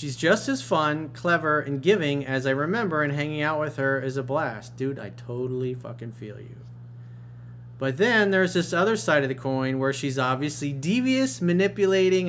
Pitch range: 120-160 Hz